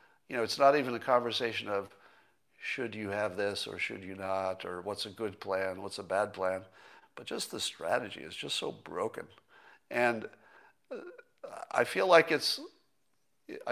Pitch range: 110-155 Hz